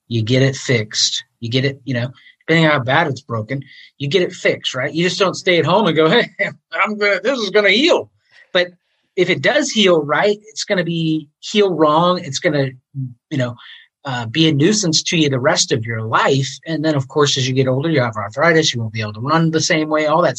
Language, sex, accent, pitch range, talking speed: English, male, American, 135-190 Hz, 255 wpm